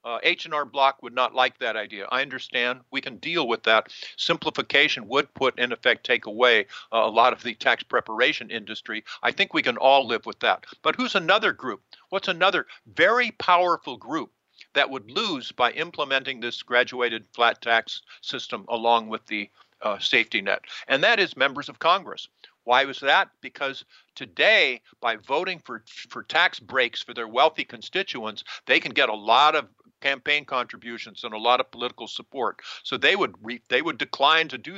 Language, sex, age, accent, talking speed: English, male, 50-69, American, 185 wpm